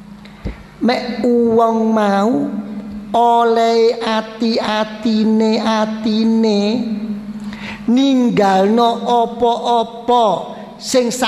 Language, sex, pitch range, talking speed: Indonesian, male, 205-275 Hz, 65 wpm